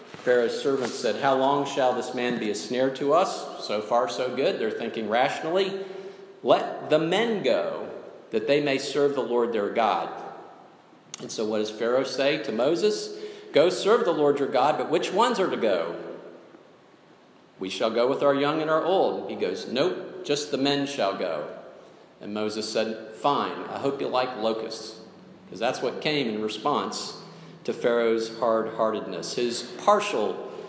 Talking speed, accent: 175 wpm, American